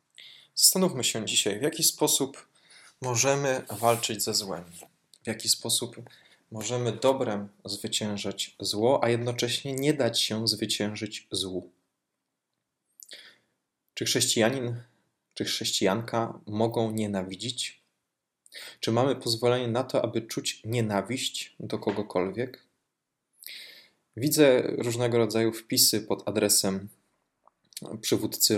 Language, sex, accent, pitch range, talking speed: Polish, male, native, 105-120 Hz, 100 wpm